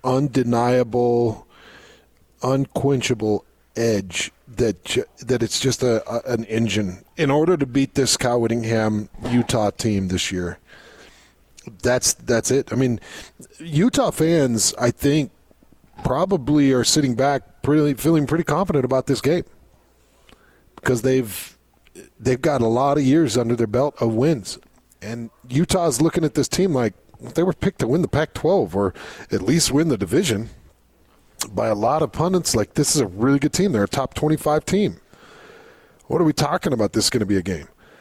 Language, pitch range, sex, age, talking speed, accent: English, 115-150 Hz, male, 40-59, 165 wpm, American